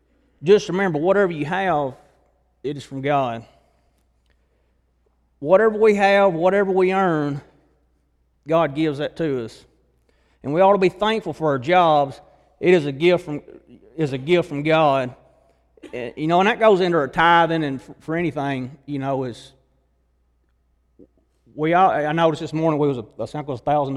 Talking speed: 160 wpm